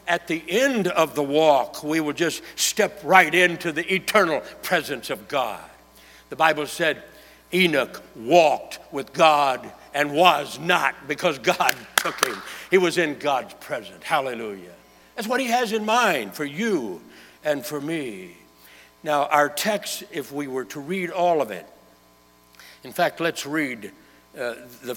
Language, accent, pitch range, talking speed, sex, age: English, American, 125-180 Hz, 155 wpm, male, 60-79